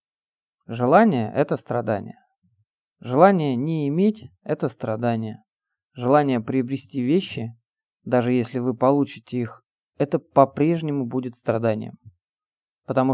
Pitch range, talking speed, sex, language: 120-150 Hz, 95 wpm, male, Russian